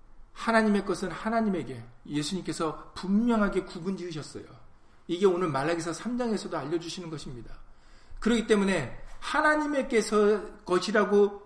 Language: Korean